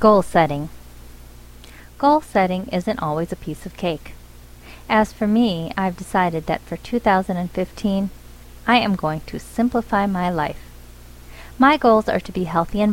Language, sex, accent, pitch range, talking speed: English, female, American, 150-215 Hz, 150 wpm